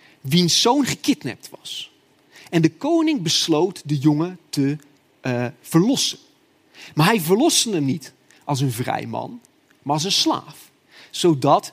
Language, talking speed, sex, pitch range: Dutch, 140 wpm, male, 150-200 Hz